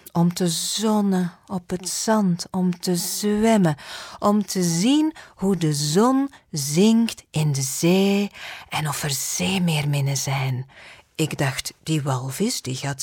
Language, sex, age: Dutch, female, 40-59